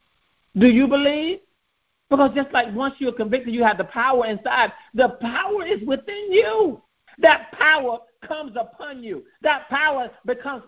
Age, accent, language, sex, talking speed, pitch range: 50-69, American, English, male, 150 wpm, 205-270 Hz